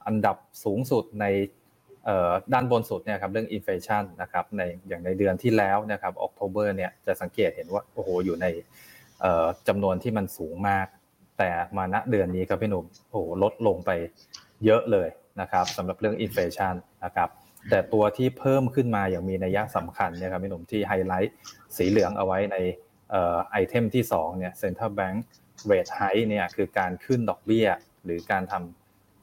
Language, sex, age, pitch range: Thai, male, 20-39, 90-110 Hz